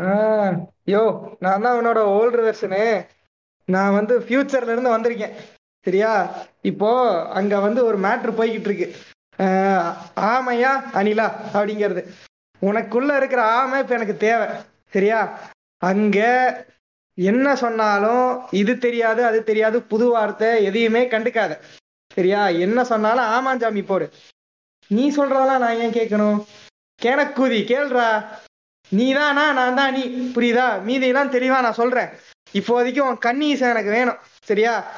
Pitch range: 210-250 Hz